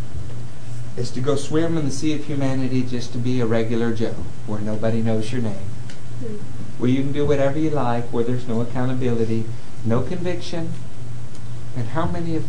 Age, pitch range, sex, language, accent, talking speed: 50-69, 120-155 Hz, male, English, American, 180 wpm